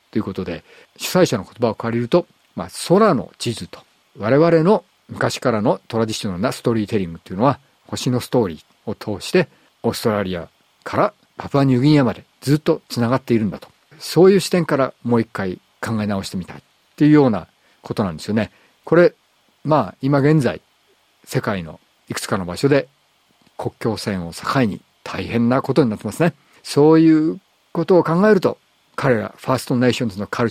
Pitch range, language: 105-145 Hz, Japanese